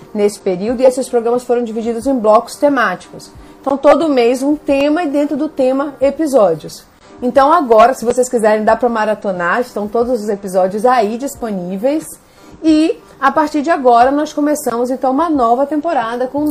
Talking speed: 170 wpm